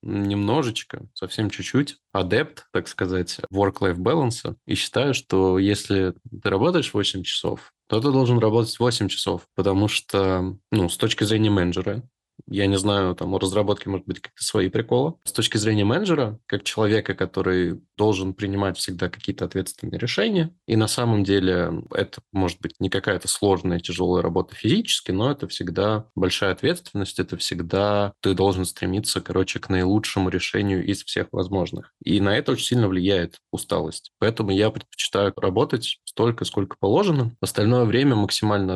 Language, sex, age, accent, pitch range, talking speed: Russian, male, 20-39, native, 95-110 Hz, 155 wpm